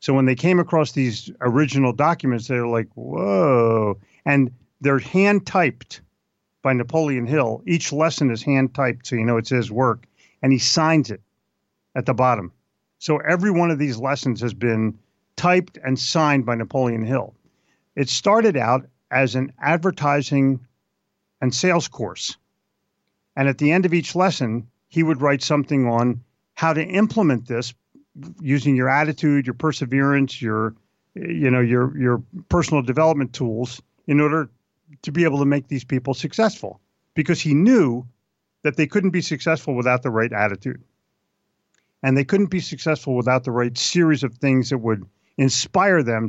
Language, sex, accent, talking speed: English, male, American, 160 wpm